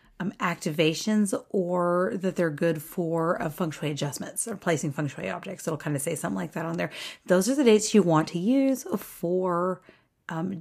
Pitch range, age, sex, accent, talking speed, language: 175-215 Hz, 30-49, female, American, 200 wpm, English